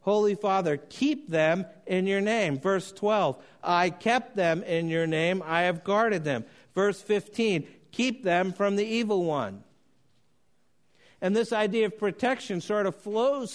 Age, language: 50-69, English